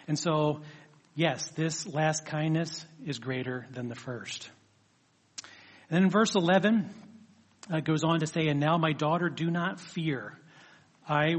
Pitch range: 135-160 Hz